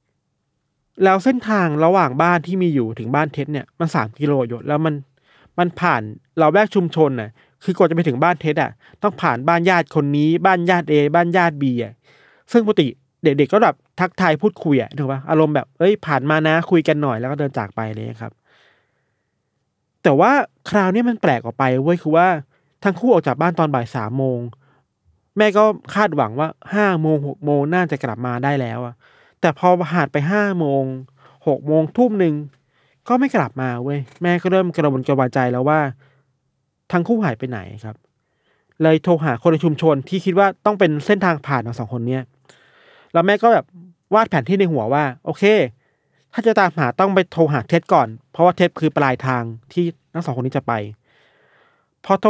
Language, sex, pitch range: Thai, male, 135-180 Hz